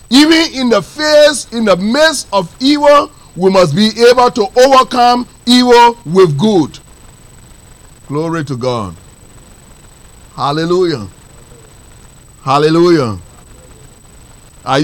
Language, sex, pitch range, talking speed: English, male, 140-220 Hz, 95 wpm